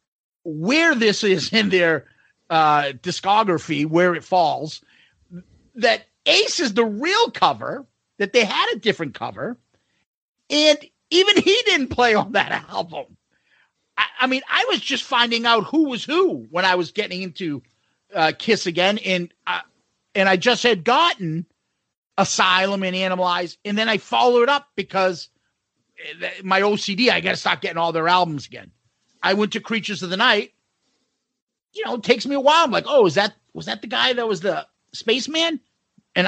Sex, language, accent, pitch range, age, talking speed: male, English, American, 170-245 Hz, 40-59, 170 wpm